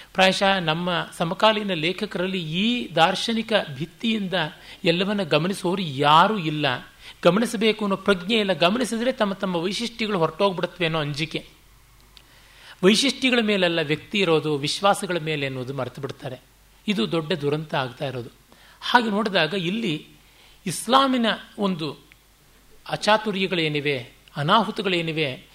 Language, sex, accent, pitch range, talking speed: Kannada, male, native, 155-205 Hz, 100 wpm